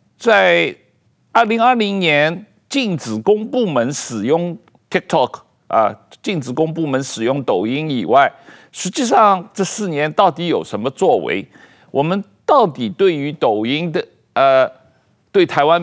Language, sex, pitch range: Chinese, male, 150-215 Hz